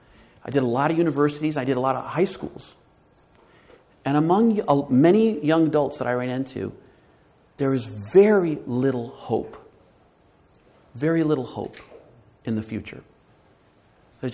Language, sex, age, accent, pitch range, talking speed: English, male, 40-59, American, 125-190 Hz, 140 wpm